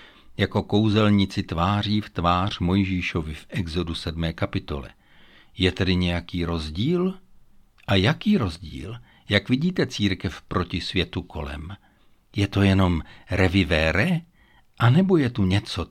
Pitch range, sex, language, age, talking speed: 90-120 Hz, male, Czech, 60-79, 120 wpm